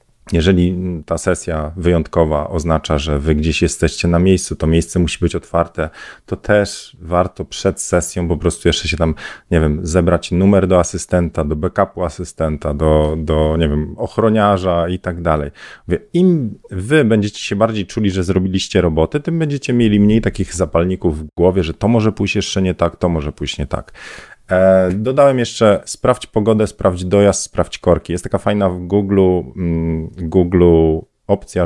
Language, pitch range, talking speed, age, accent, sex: Polish, 85-105 Hz, 165 wpm, 40-59, native, male